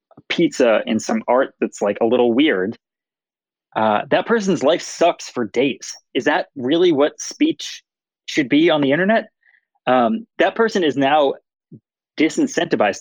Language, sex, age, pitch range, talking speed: English, male, 20-39, 120-160 Hz, 150 wpm